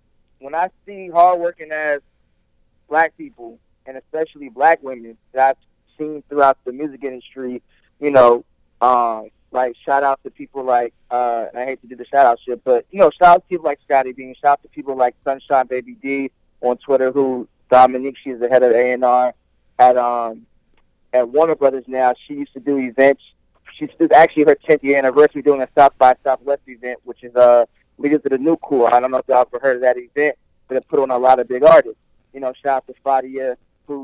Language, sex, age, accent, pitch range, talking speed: English, male, 20-39, American, 125-155 Hz, 210 wpm